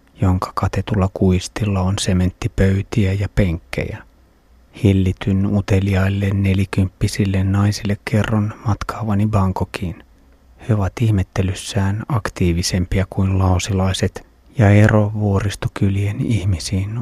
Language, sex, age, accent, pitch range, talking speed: Finnish, male, 30-49, native, 95-100 Hz, 85 wpm